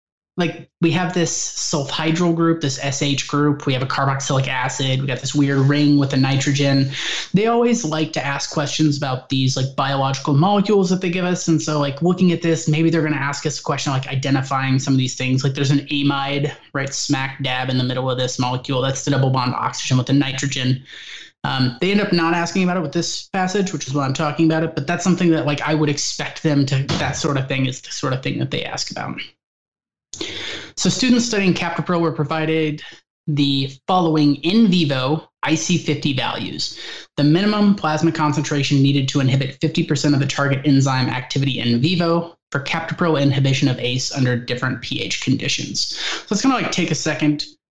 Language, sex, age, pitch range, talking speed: English, male, 20-39, 135-165 Hz, 205 wpm